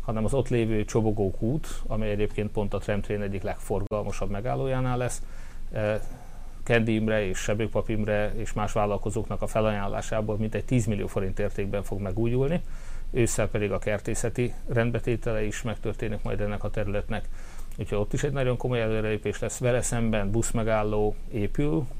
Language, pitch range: Hungarian, 100-115 Hz